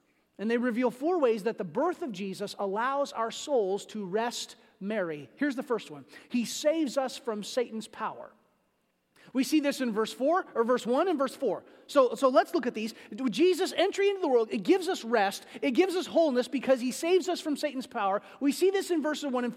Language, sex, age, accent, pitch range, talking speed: English, male, 30-49, American, 225-310 Hz, 220 wpm